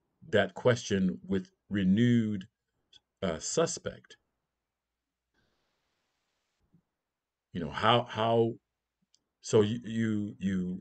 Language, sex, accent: English, male, American